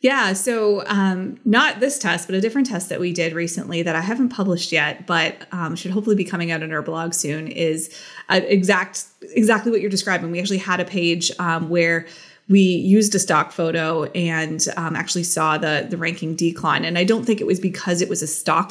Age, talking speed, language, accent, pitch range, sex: 20-39, 215 wpm, English, American, 165-200 Hz, female